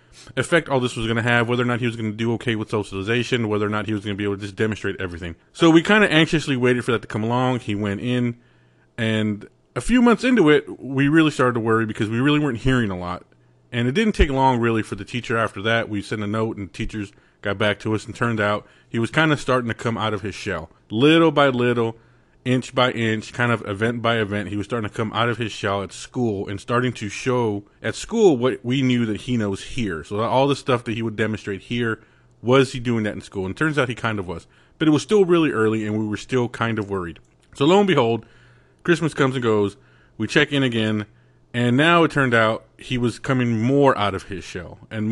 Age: 30-49